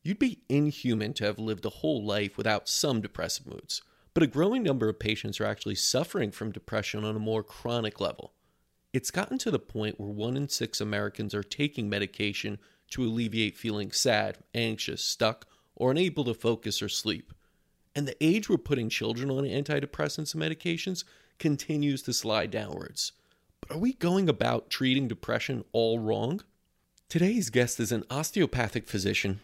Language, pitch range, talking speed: English, 105-140 Hz, 170 wpm